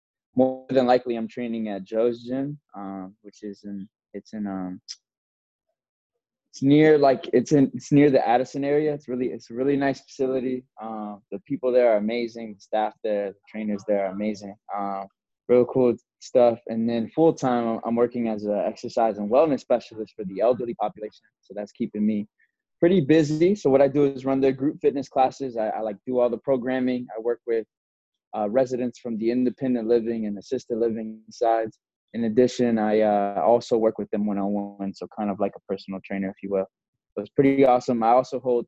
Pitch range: 105-125 Hz